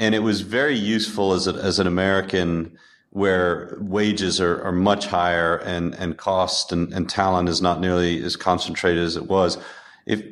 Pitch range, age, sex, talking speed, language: 90-100 Hz, 40-59, male, 180 wpm, English